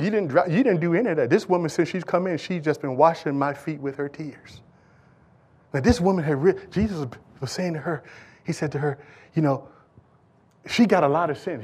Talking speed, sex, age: 230 wpm, male, 30-49